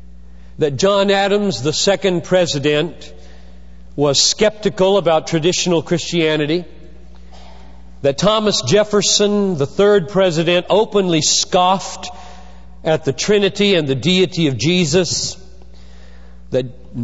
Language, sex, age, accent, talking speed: English, male, 50-69, American, 100 wpm